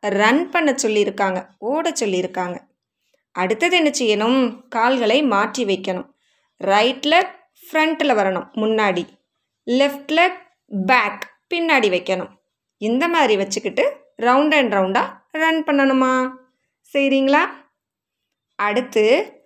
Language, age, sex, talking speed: Tamil, 20-39, female, 45 wpm